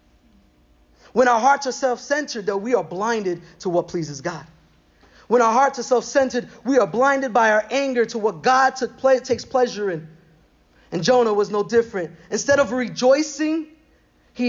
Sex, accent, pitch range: male, American, 180-245 Hz